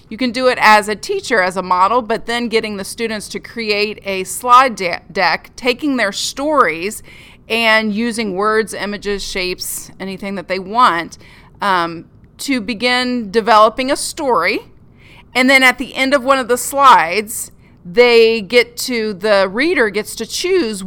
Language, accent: English, American